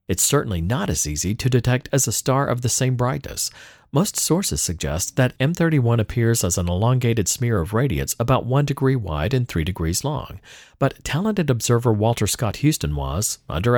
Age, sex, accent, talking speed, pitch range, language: 50-69, male, American, 185 wpm, 105-135 Hz, English